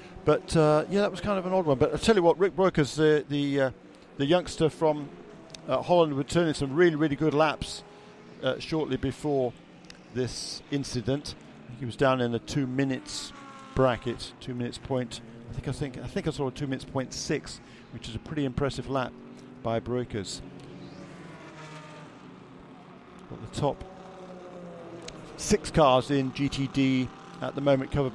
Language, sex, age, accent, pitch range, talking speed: English, male, 50-69, British, 120-150 Hz, 175 wpm